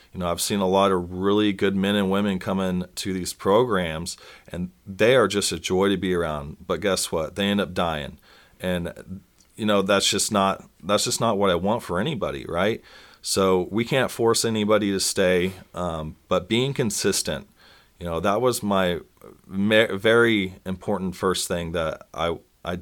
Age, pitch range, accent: 40-59, 90-105 Hz, American